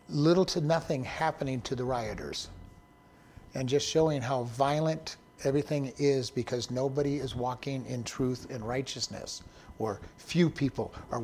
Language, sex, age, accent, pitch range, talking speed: English, male, 60-79, American, 130-165 Hz, 140 wpm